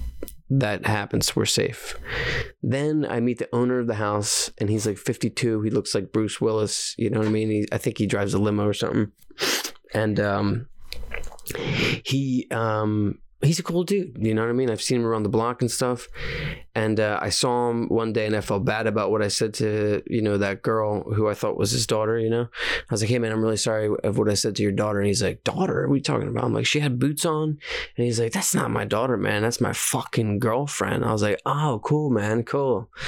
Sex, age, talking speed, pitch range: male, 20-39, 240 wpm, 100-125 Hz